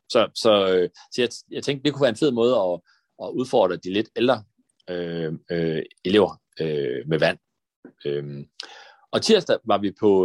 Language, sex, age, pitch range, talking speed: Danish, male, 30-49, 85-115 Hz, 180 wpm